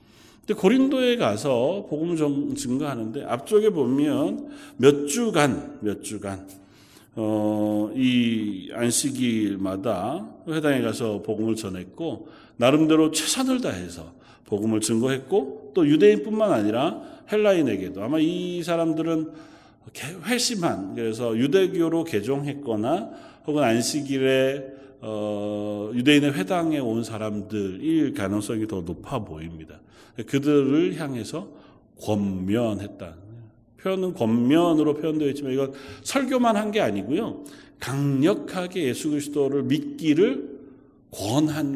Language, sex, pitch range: Korean, male, 110-165 Hz